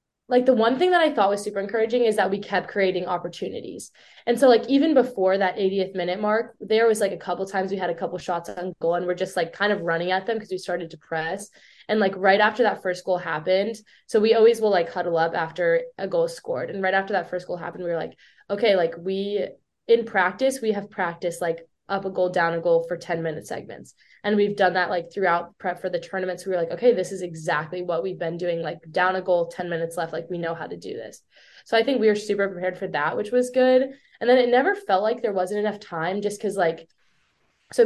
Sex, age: female, 20-39